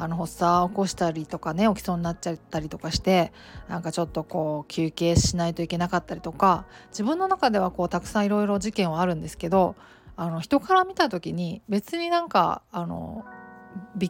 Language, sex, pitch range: Japanese, female, 175-225 Hz